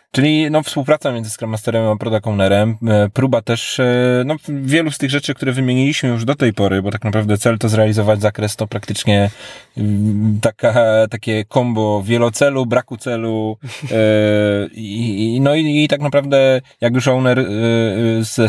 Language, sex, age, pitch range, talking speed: Polish, male, 20-39, 100-120 Hz, 155 wpm